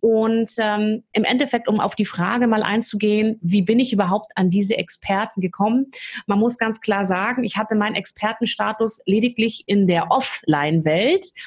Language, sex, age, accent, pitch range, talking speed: German, female, 30-49, German, 195-240 Hz, 160 wpm